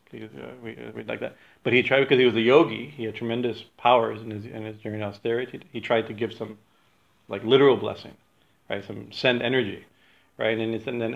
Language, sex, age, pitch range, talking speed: English, male, 40-59, 110-120 Hz, 235 wpm